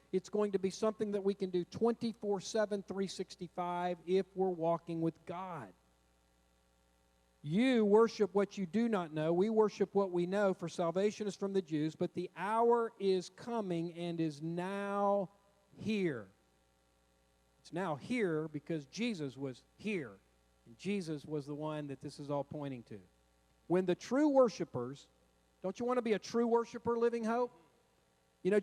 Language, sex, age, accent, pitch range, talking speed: English, male, 50-69, American, 165-225 Hz, 160 wpm